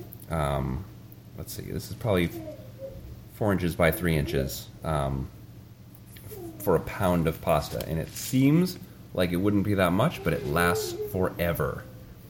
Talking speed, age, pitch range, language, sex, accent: 145 wpm, 30-49, 80-100 Hz, English, male, American